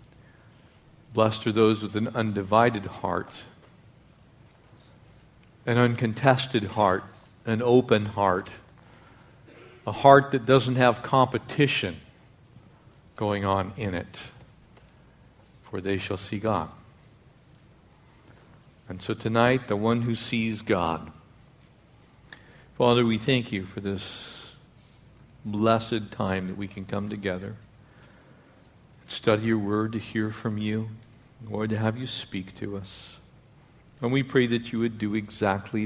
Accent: American